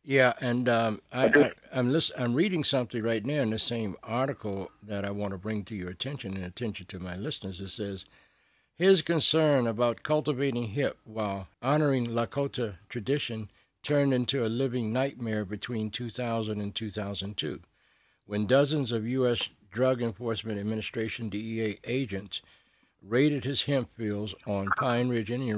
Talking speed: 155 wpm